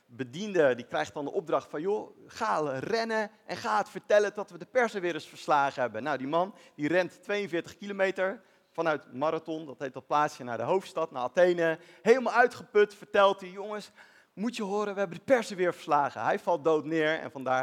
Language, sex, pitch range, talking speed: Dutch, male, 160-225 Hz, 205 wpm